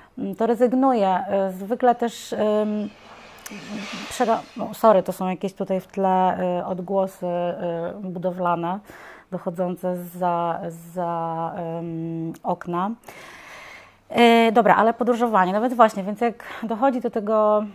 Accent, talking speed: native, 115 wpm